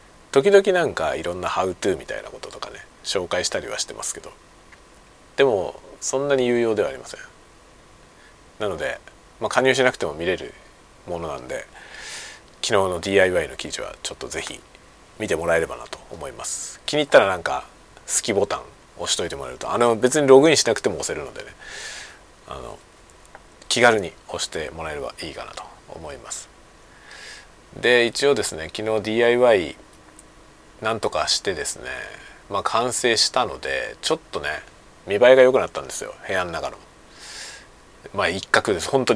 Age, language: 40-59, Japanese